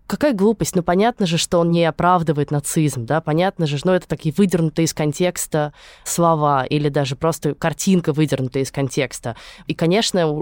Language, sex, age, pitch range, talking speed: Russian, female, 20-39, 150-185 Hz, 175 wpm